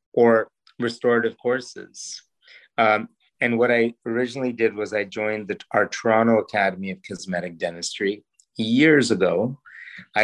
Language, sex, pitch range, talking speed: English, male, 100-115 Hz, 130 wpm